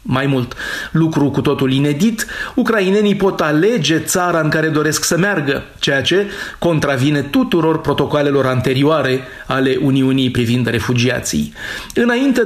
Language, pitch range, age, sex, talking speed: Romanian, 135-160 Hz, 30-49, male, 125 wpm